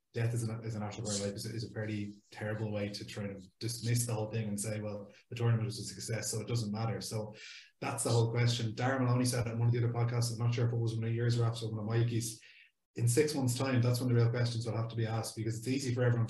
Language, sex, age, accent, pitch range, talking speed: English, male, 20-39, Irish, 110-120 Hz, 275 wpm